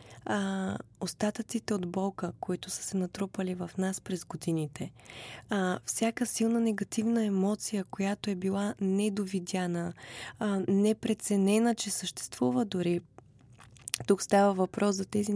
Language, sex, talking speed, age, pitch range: Bulgarian, female, 115 wpm, 20-39, 180-215 Hz